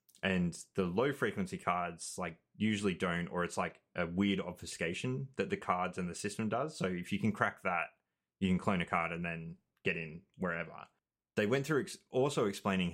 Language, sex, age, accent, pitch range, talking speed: English, male, 20-39, Australian, 90-115 Hz, 195 wpm